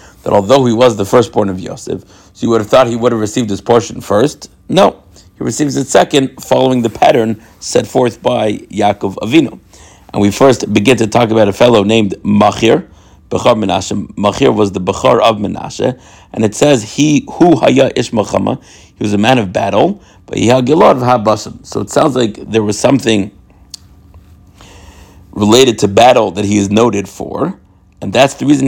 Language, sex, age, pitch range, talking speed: English, male, 50-69, 100-120 Hz, 185 wpm